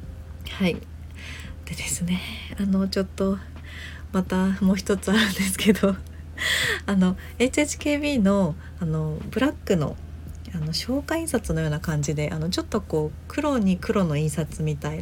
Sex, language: female, Japanese